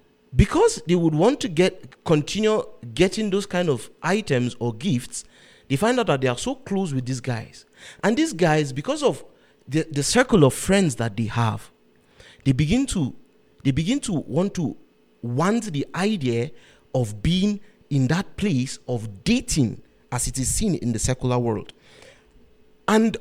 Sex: male